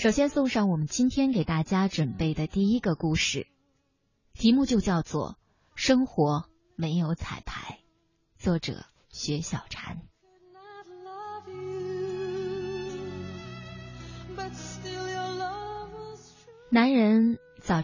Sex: female